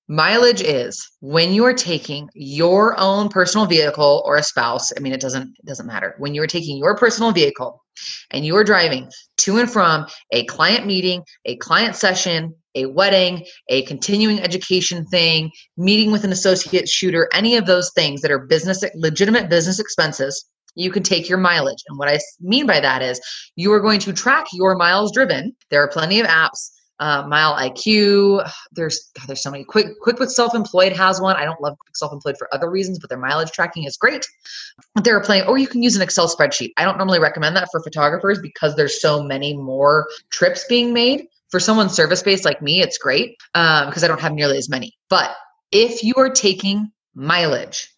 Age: 20-39